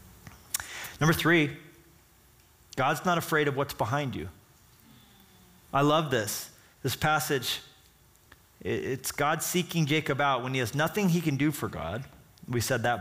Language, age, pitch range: English, 30-49, 125-165 Hz